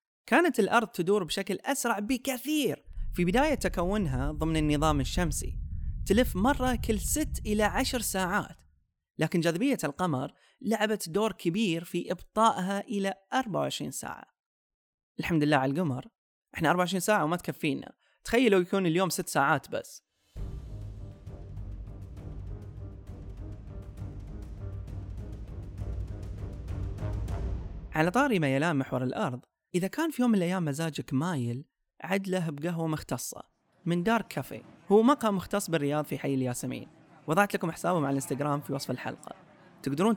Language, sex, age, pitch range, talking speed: Arabic, male, 30-49, 125-200 Hz, 120 wpm